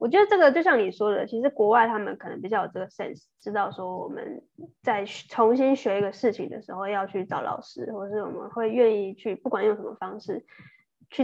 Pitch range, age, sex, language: 205-260 Hz, 20-39, female, Chinese